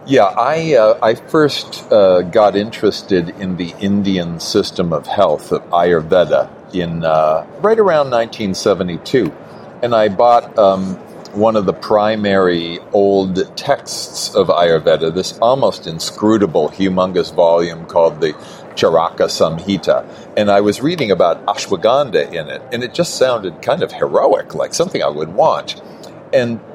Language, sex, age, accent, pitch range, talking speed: English, male, 50-69, American, 90-130 Hz, 140 wpm